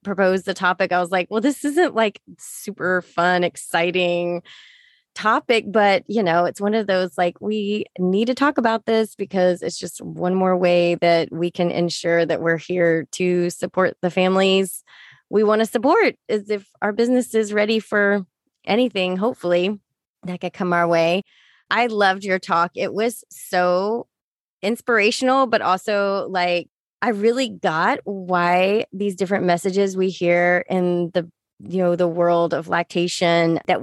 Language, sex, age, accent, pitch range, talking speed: English, female, 20-39, American, 175-210 Hz, 165 wpm